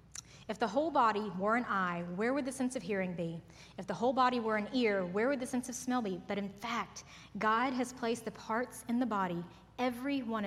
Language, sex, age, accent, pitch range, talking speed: English, female, 30-49, American, 190-250 Hz, 235 wpm